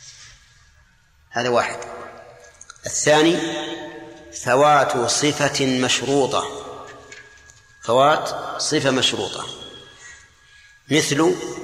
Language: Arabic